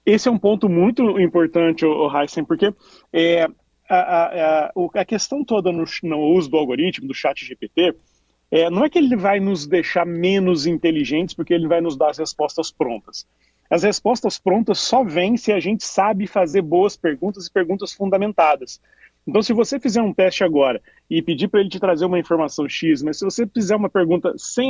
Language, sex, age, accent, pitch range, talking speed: Portuguese, male, 40-59, Brazilian, 165-210 Hz, 185 wpm